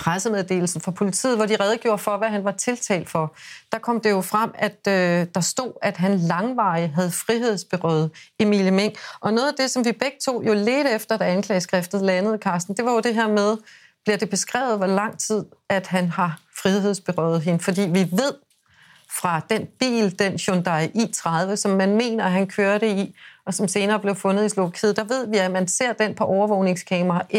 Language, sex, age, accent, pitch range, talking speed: Danish, female, 30-49, native, 185-215 Hz, 200 wpm